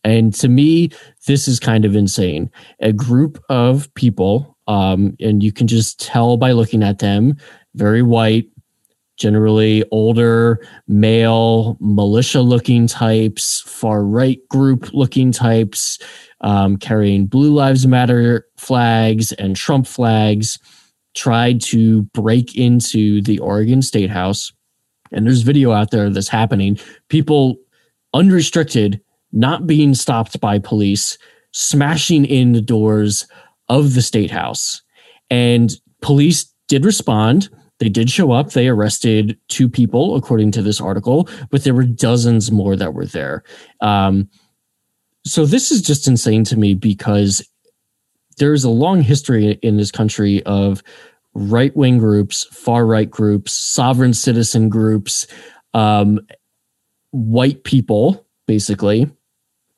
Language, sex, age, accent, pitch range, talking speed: English, male, 20-39, American, 105-130 Hz, 125 wpm